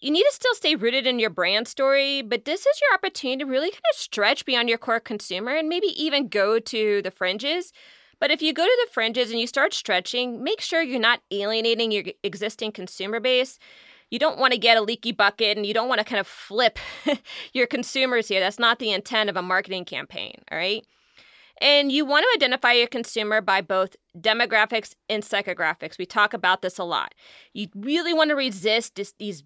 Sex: female